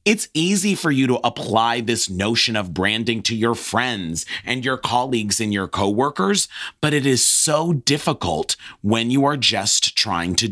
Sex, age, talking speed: male, 30-49, 170 wpm